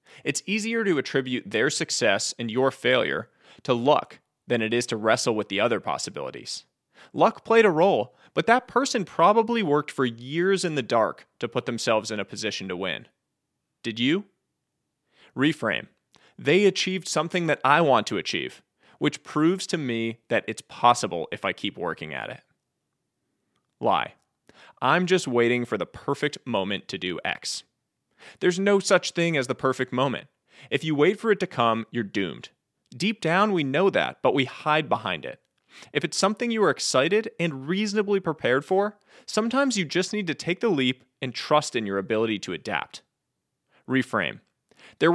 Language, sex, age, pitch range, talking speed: English, male, 30-49, 120-185 Hz, 175 wpm